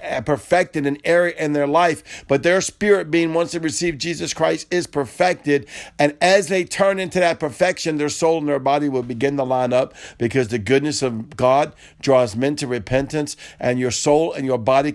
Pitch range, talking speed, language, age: 120-145 Hz, 195 wpm, English, 50-69